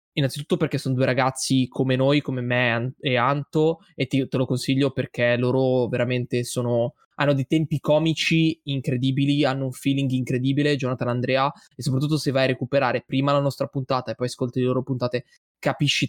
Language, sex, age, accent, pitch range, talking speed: Italian, male, 20-39, native, 130-150 Hz, 180 wpm